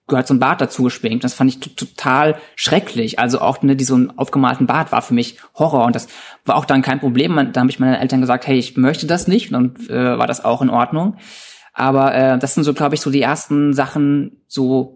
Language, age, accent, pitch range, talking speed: German, 20-39, German, 125-150 Hz, 235 wpm